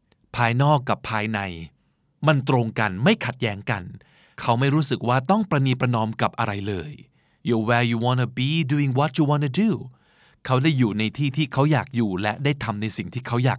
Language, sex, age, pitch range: Thai, male, 20-39, 110-145 Hz